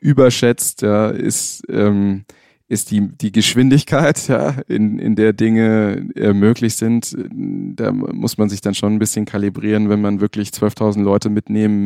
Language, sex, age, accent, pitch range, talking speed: German, male, 20-39, German, 100-110 Hz, 155 wpm